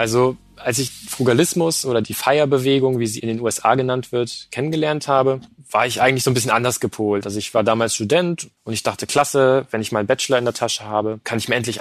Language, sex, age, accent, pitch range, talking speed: German, male, 20-39, German, 110-130 Hz, 235 wpm